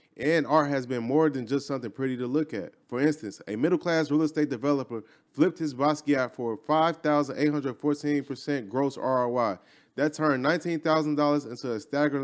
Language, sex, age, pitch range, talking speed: English, male, 20-39, 130-155 Hz, 160 wpm